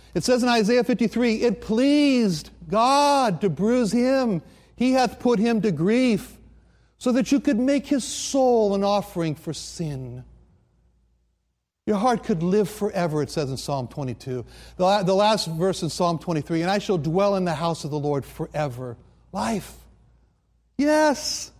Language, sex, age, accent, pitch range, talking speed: English, male, 60-79, American, 165-255 Hz, 160 wpm